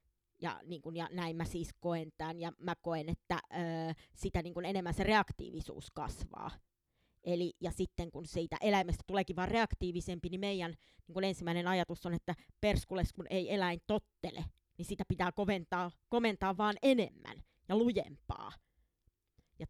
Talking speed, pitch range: 160 wpm, 165-200 Hz